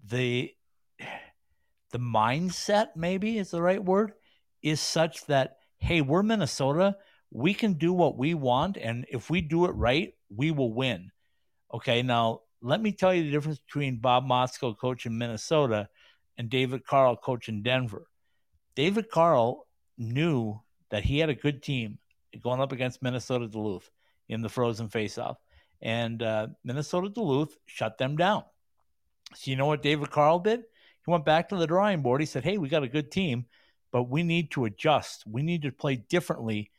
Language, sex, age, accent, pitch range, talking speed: English, male, 60-79, American, 120-165 Hz, 175 wpm